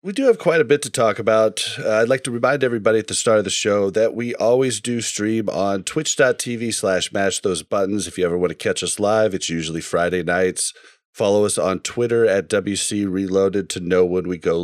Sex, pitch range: male, 95-135 Hz